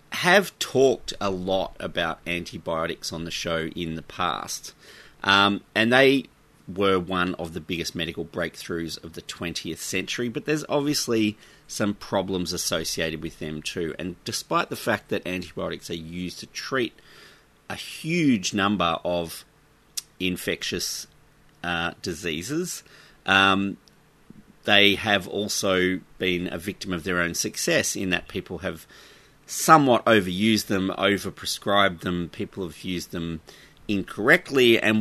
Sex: male